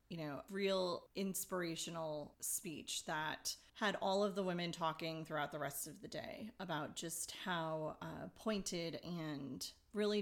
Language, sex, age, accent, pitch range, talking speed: English, female, 30-49, American, 155-190 Hz, 145 wpm